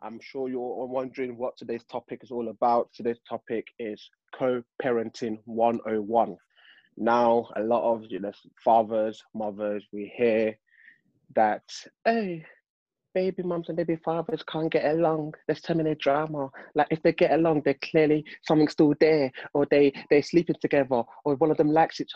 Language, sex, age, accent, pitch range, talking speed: English, male, 20-39, British, 110-140 Hz, 160 wpm